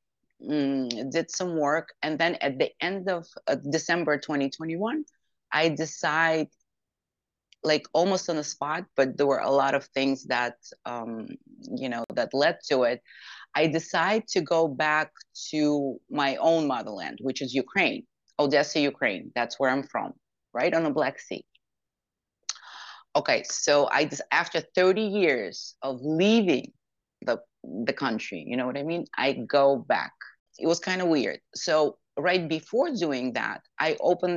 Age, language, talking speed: 30-49, English, 155 wpm